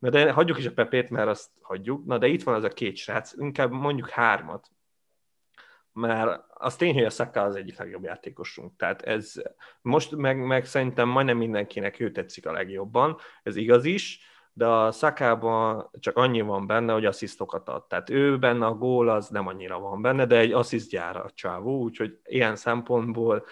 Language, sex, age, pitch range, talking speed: Hungarian, male, 30-49, 110-130 Hz, 185 wpm